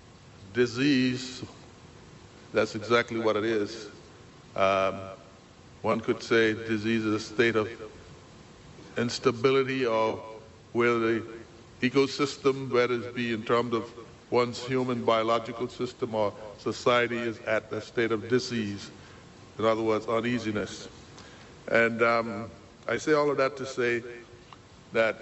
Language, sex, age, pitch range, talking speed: English, male, 60-79, 115-130 Hz, 125 wpm